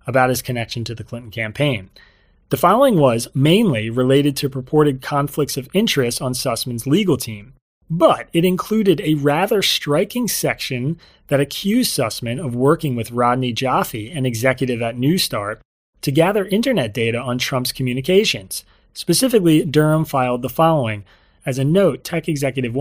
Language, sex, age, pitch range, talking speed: English, male, 30-49, 120-155 Hz, 150 wpm